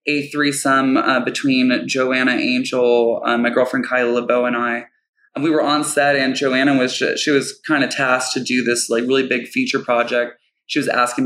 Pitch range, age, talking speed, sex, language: 125-145 Hz, 20-39, 205 wpm, male, English